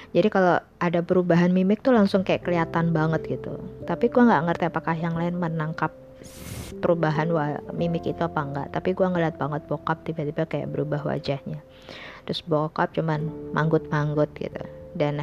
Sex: female